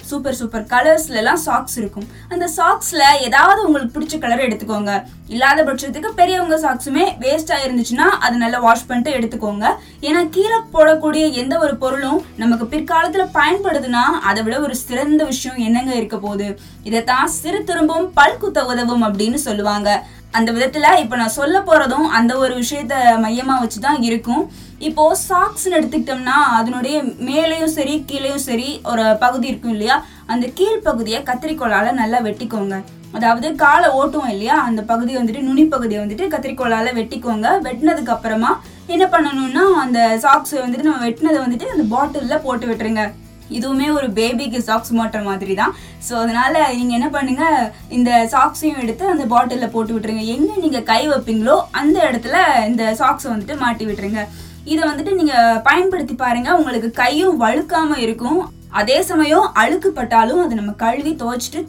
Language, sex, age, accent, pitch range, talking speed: Tamil, female, 20-39, native, 230-310 Hz, 130 wpm